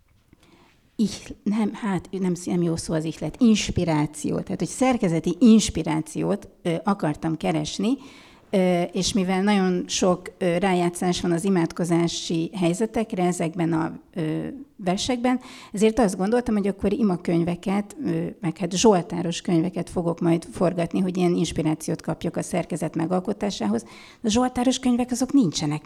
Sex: female